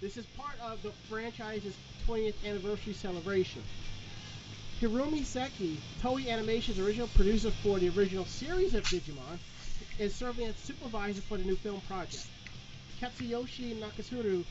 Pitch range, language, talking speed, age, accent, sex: 175-220 Hz, English, 130 wpm, 40-59, American, male